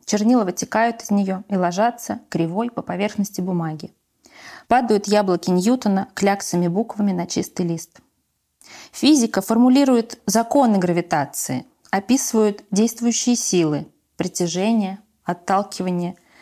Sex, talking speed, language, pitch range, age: female, 100 wpm, Russian, 180-240 Hz, 20-39